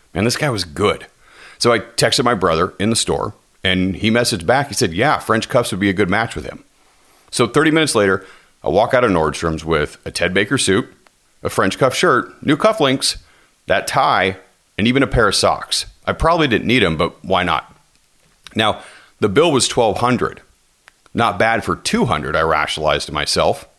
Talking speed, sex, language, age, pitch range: 195 wpm, male, English, 40-59, 90-130 Hz